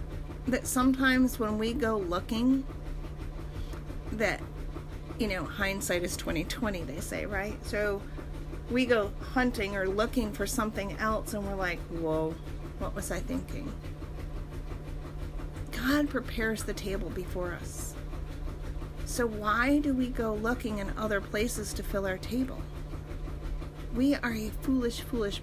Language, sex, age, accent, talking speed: English, female, 40-59, American, 135 wpm